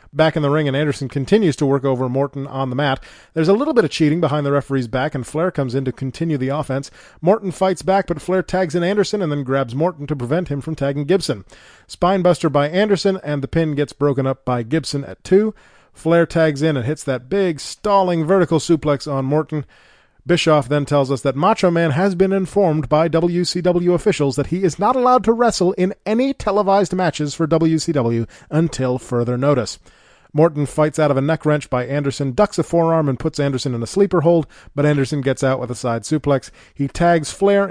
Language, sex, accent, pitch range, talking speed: English, male, American, 140-175 Hz, 215 wpm